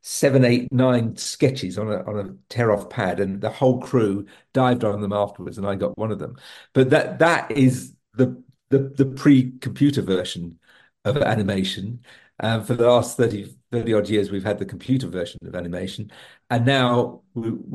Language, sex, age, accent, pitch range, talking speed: English, male, 50-69, British, 105-130 Hz, 185 wpm